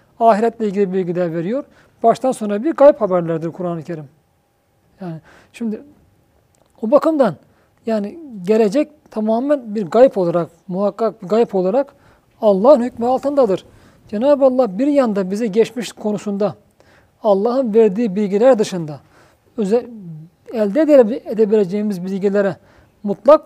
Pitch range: 200-250 Hz